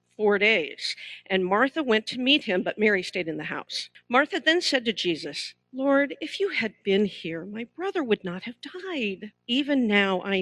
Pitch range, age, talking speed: 175-245 Hz, 50-69, 195 wpm